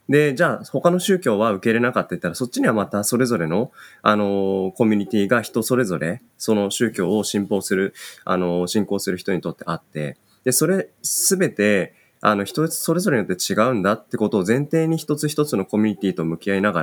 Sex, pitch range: male, 95-140 Hz